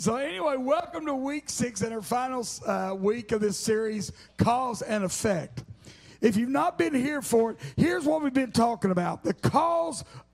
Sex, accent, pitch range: male, American, 185-275 Hz